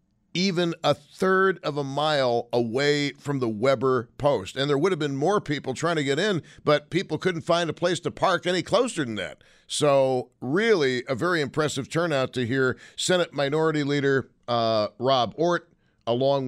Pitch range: 115-150 Hz